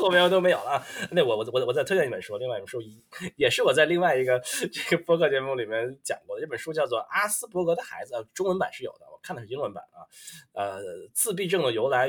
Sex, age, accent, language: male, 20-39, native, Chinese